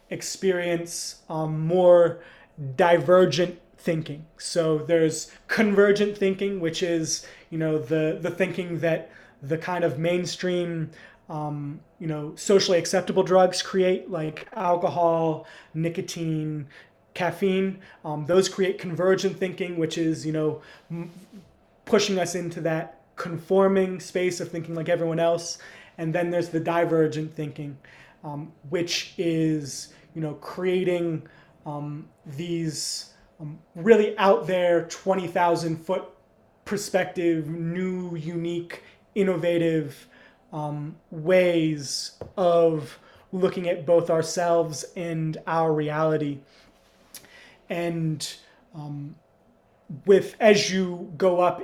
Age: 20-39